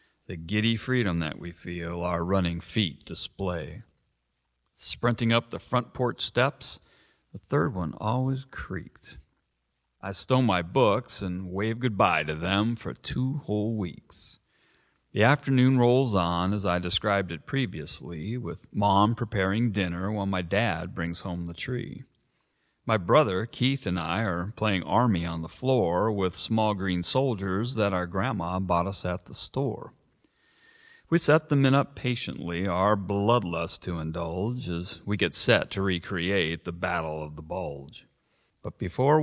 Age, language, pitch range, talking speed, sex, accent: 40-59, English, 90-120 Hz, 155 wpm, male, American